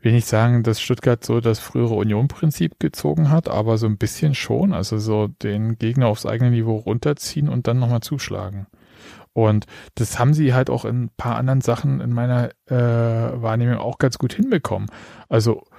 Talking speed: 180 wpm